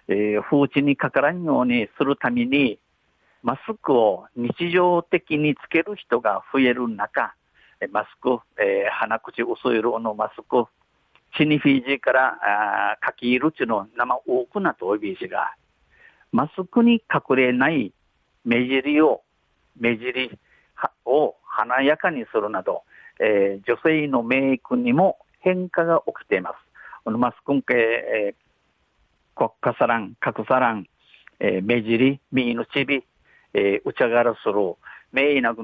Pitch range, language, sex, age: 120-155 Hz, Japanese, male, 50-69